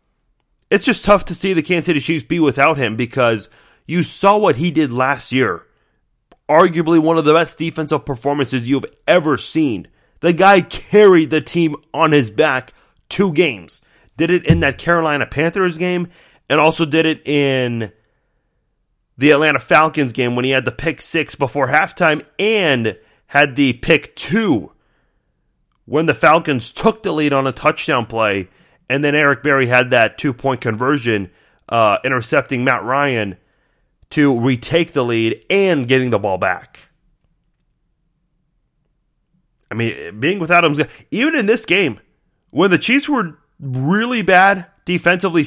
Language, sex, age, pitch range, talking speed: English, male, 30-49, 135-175 Hz, 155 wpm